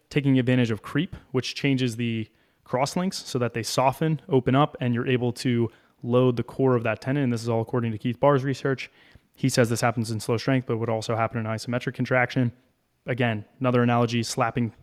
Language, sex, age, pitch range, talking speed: English, male, 20-39, 115-130 Hz, 205 wpm